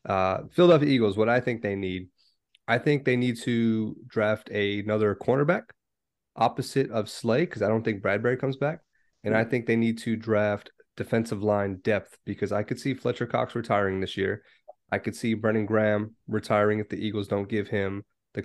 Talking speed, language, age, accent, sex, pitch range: 190 wpm, English, 30-49, American, male, 100-120 Hz